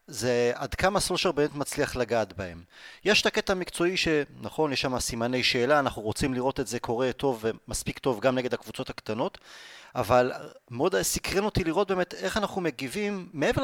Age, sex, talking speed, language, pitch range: 30-49, male, 175 wpm, Hebrew, 120-165 Hz